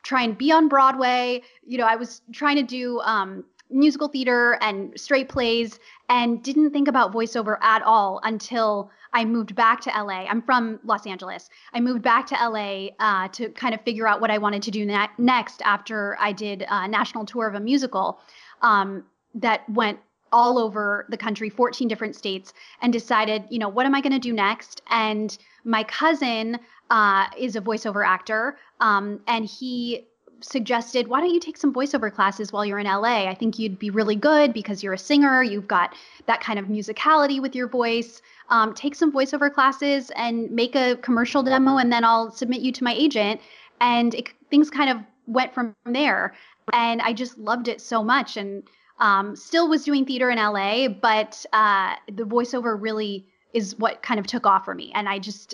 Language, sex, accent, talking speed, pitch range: English, female, American, 195 wpm, 215-255 Hz